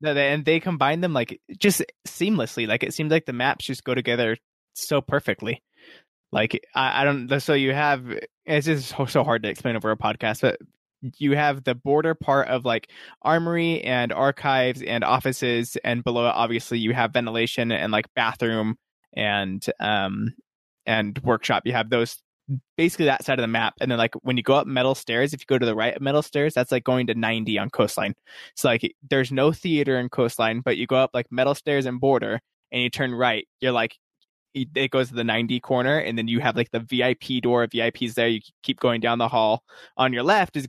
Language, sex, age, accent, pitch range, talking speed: English, male, 20-39, American, 115-140 Hz, 210 wpm